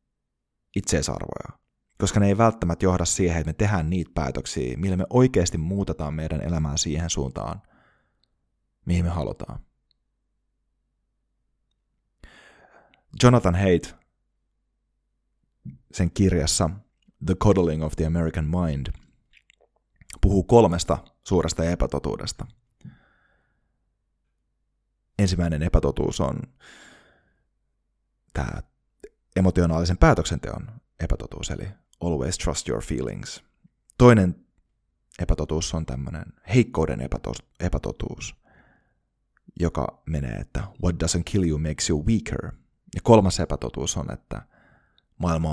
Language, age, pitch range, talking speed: Finnish, 30-49, 80-100 Hz, 95 wpm